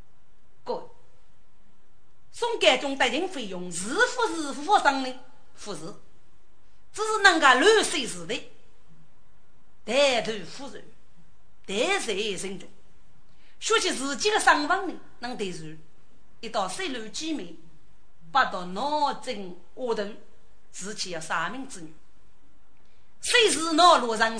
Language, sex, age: Chinese, female, 40-59